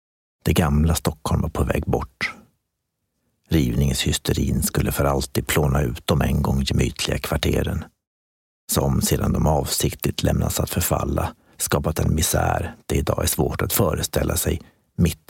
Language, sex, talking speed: Swedish, male, 140 wpm